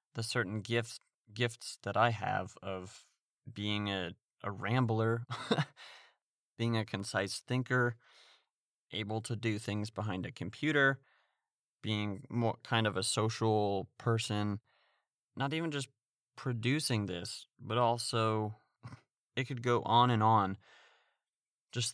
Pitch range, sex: 105-125 Hz, male